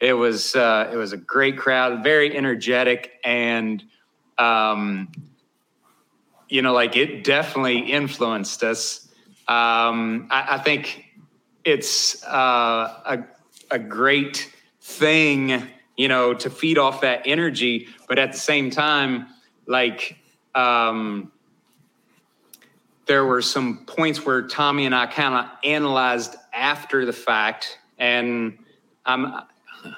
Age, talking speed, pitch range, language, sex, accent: 30-49, 120 wpm, 115-140 Hz, English, male, American